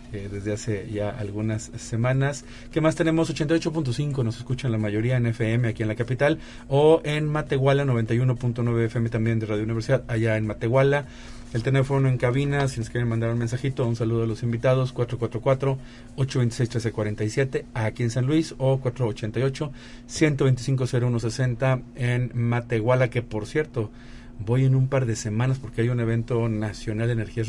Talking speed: 160 wpm